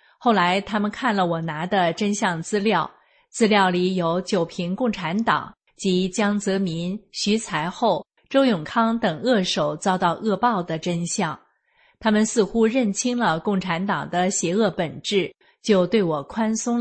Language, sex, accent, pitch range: Chinese, female, native, 175-220 Hz